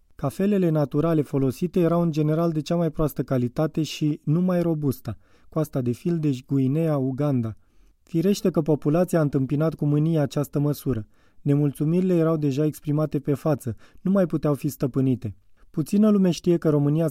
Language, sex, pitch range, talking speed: Romanian, male, 135-165 Hz, 160 wpm